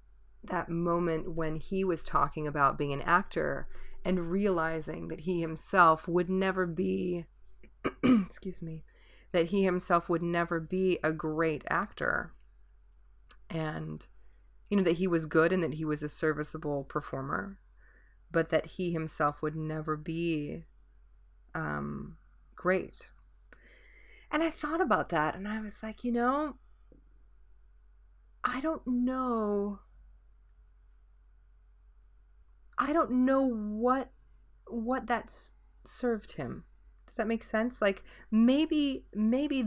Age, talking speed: 30-49, 125 wpm